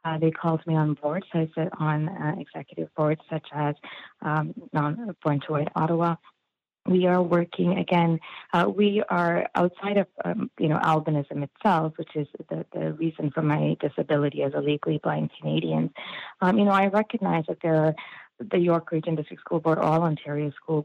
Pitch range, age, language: 150-170 Hz, 30-49, English